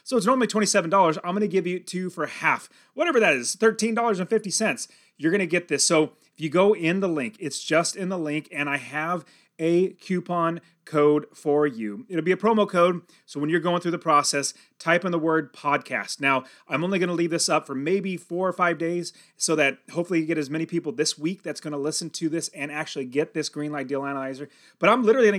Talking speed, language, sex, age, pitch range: 235 wpm, English, male, 30-49, 145-185 Hz